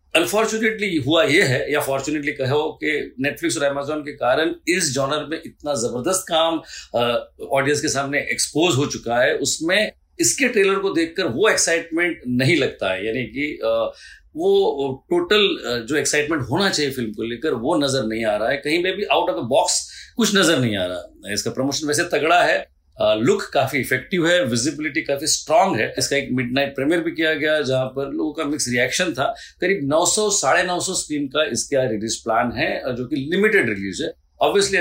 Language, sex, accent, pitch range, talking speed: Hindi, male, native, 120-175 Hz, 190 wpm